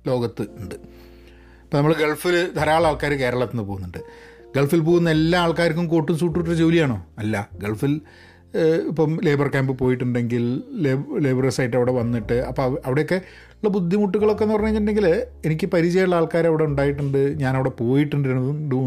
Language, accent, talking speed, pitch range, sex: Malayalam, native, 130 wpm, 125-175 Hz, male